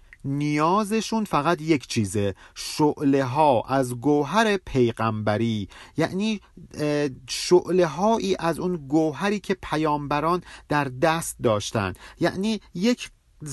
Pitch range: 135-195 Hz